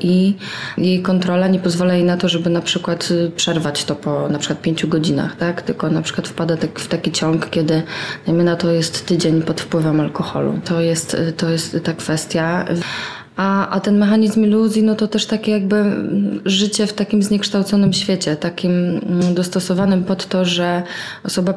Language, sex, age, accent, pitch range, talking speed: Polish, female, 20-39, native, 170-190 Hz, 165 wpm